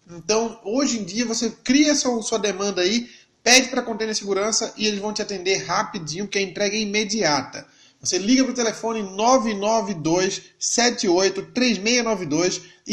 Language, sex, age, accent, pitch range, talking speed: Portuguese, male, 20-39, Brazilian, 190-230 Hz, 140 wpm